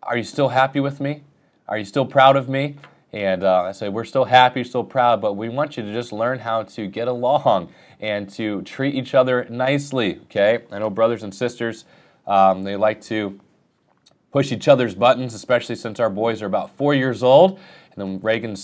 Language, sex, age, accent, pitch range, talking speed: English, male, 20-39, American, 100-125 Hz, 205 wpm